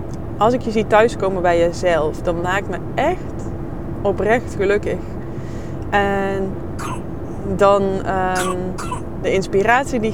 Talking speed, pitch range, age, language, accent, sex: 110 wpm, 170-220 Hz, 20-39, Dutch, Dutch, female